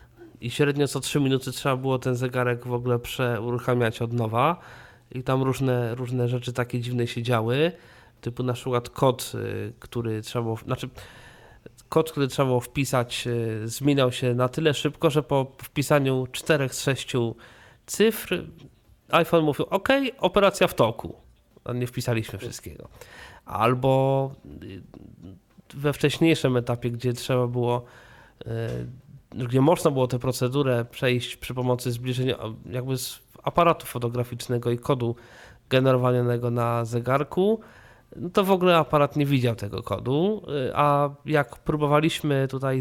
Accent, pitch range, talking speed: native, 120-145 Hz, 130 wpm